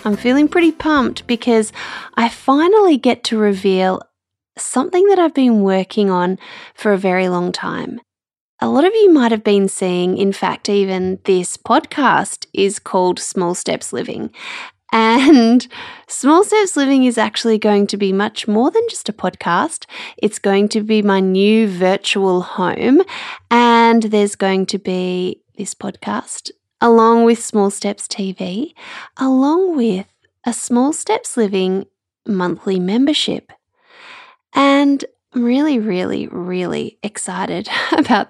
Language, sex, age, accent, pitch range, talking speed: English, female, 20-39, Australian, 195-280 Hz, 140 wpm